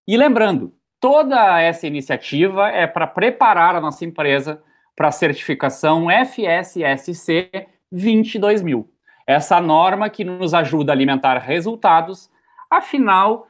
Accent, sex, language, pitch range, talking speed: Brazilian, male, Portuguese, 160-215 Hz, 110 wpm